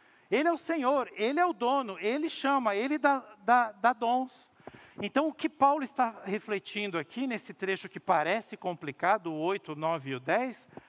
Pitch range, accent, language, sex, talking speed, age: 185-250 Hz, Brazilian, Portuguese, male, 180 wpm, 50-69